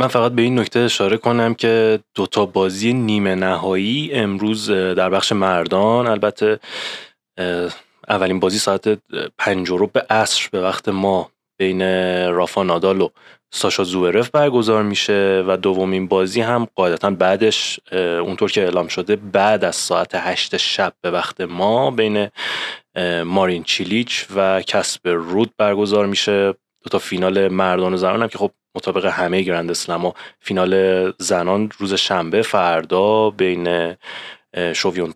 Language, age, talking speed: Persian, 20-39, 135 wpm